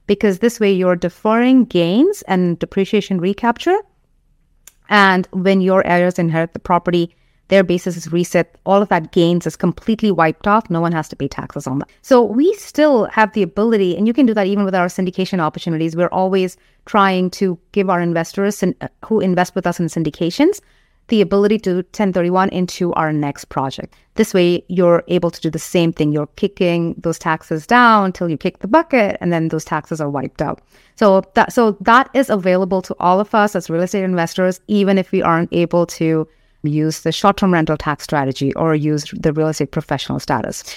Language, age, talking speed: English, 30-49, 195 wpm